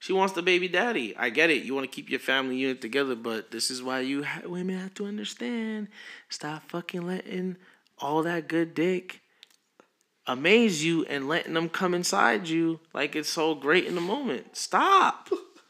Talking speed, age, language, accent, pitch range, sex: 185 wpm, 20-39, English, American, 155-230 Hz, male